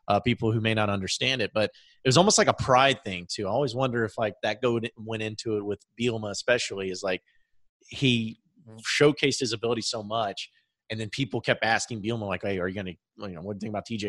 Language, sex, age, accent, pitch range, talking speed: English, male, 30-49, American, 100-135 Hz, 240 wpm